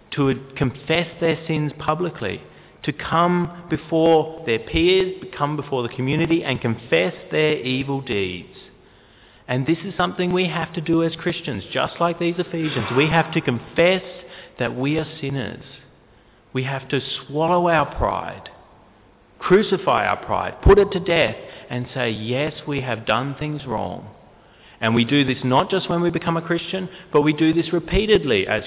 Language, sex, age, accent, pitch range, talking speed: English, male, 30-49, Australian, 135-180 Hz, 165 wpm